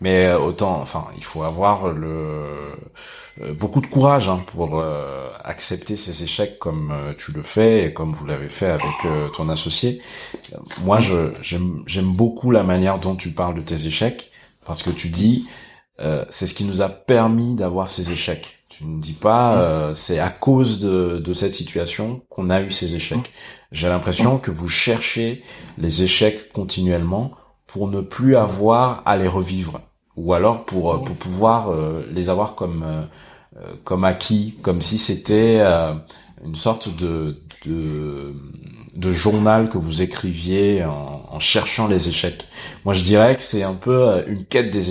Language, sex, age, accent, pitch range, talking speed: French, male, 30-49, French, 85-110 Hz, 165 wpm